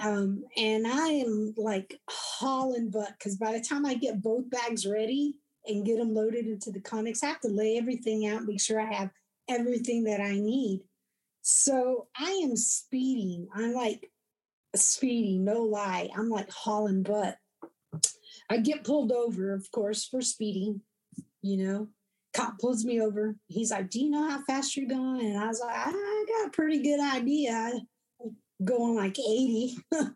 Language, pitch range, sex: English, 200-250 Hz, female